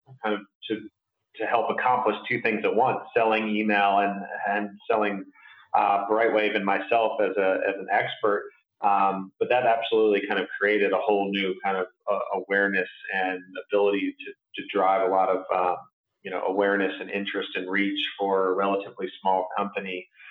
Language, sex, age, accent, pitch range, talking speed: English, male, 30-49, American, 100-115 Hz, 175 wpm